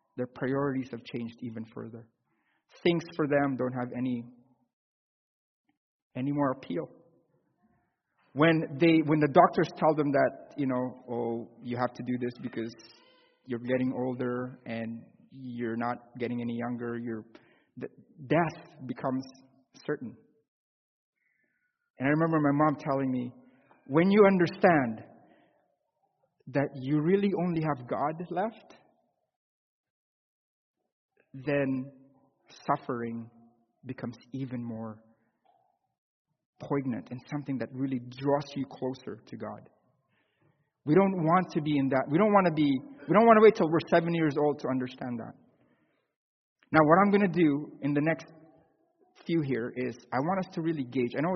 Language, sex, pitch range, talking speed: English, male, 125-165 Hz, 145 wpm